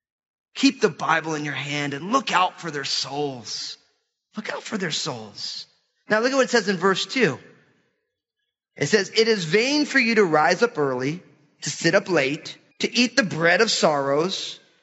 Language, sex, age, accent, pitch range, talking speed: English, male, 30-49, American, 155-225 Hz, 190 wpm